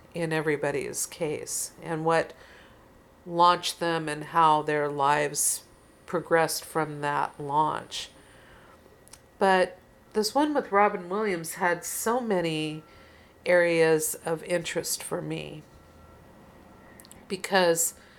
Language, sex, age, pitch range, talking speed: English, female, 50-69, 150-175 Hz, 100 wpm